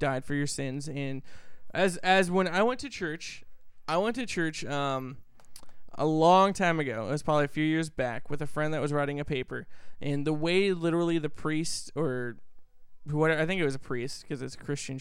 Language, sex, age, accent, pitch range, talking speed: English, male, 20-39, American, 145-195 Hz, 215 wpm